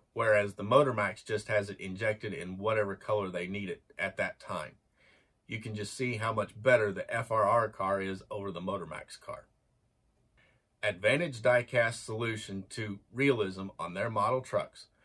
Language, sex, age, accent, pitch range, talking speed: English, male, 40-59, American, 100-125 Hz, 160 wpm